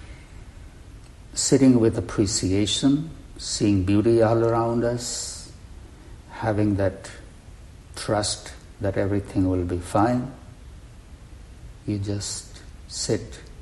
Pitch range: 90-115 Hz